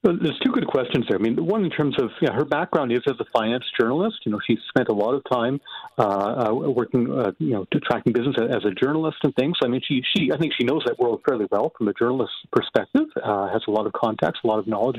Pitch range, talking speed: 115-155 Hz, 270 wpm